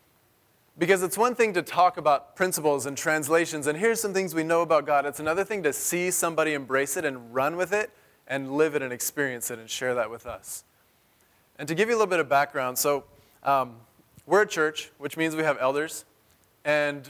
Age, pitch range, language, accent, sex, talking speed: 20-39, 140-170 Hz, English, American, male, 215 wpm